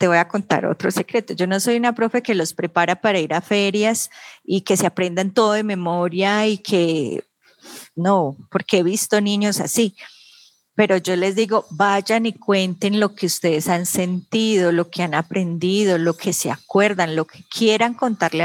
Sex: female